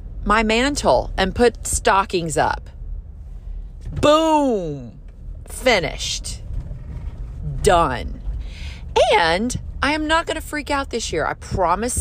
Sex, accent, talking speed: female, American, 100 wpm